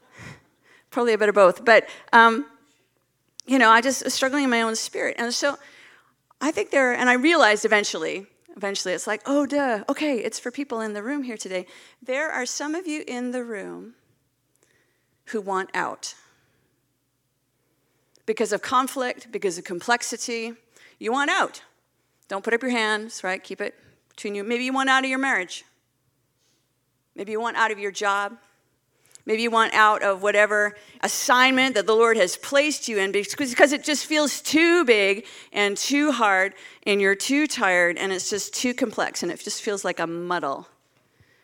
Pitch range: 195-255 Hz